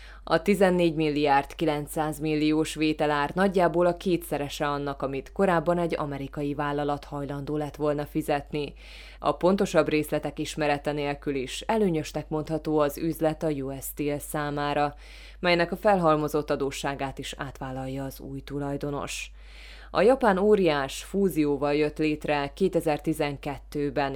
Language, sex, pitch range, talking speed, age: Hungarian, female, 145-160 Hz, 120 wpm, 20-39